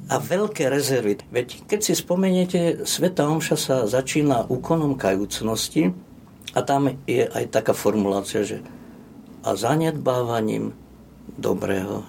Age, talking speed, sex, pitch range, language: 60-79, 115 wpm, male, 115-170 Hz, Slovak